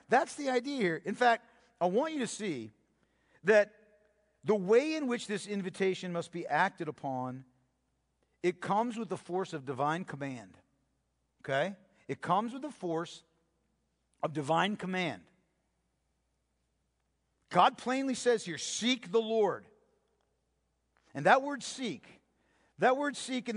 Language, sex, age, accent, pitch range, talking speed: English, male, 50-69, American, 160-235 Hz, 135 wpm